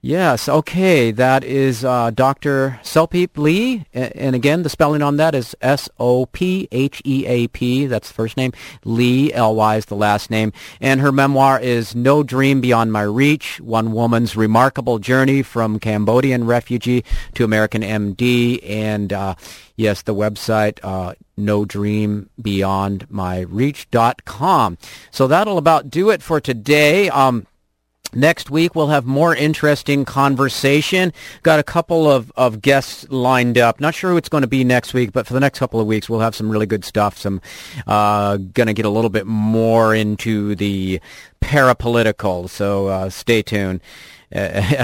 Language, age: English, 40-59